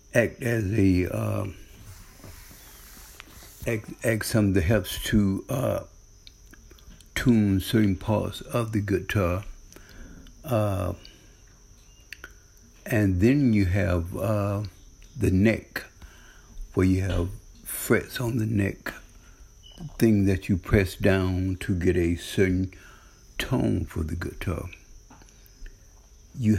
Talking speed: 105 wpm